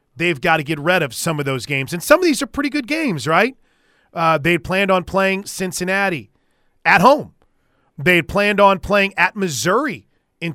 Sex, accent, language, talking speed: male, American, English, 195 wpm